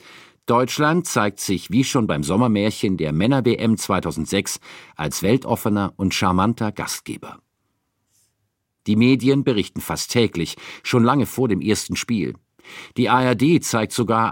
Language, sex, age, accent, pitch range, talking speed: German, male, 50-69, German, 100-130 Hz, 125 wpm